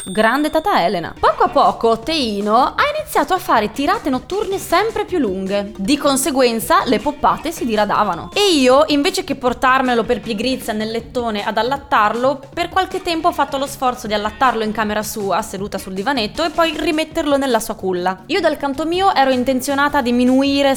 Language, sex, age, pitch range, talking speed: Italian, female, 20-39, 205-285 Hz, 180 wpm